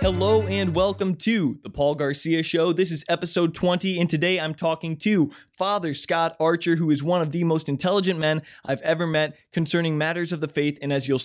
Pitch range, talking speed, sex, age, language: 145-185 Hz, 210 wpm, male, 20-39, English